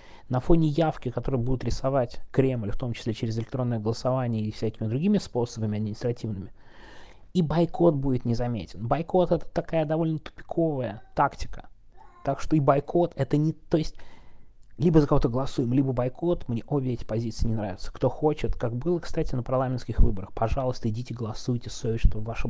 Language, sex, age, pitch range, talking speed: Russian, male, 20-39, 110-140 Hz, 165 wpm